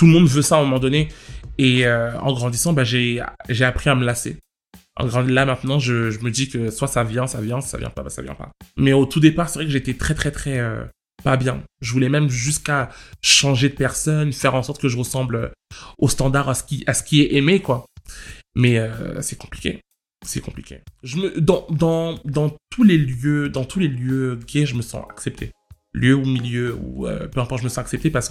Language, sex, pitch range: French, male, 125-145 Hz